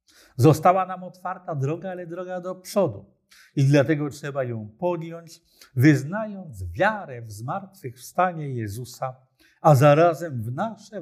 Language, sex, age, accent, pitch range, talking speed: Polish, male, 50-69, native, 130-185 Hz, 120 wpm